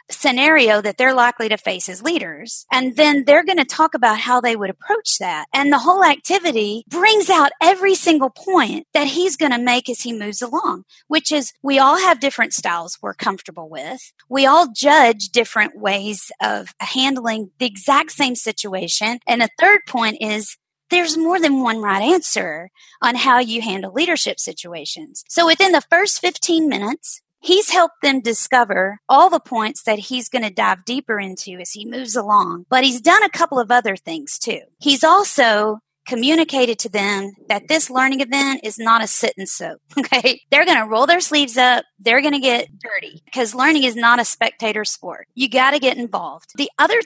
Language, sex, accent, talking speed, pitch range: English, female, American, 195 wpm, 220-310 Hz